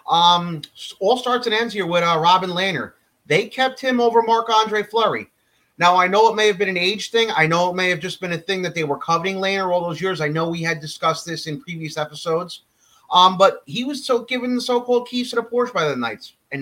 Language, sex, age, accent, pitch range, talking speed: English, male, 30-49, American, 155-195 Hz, 250 wpm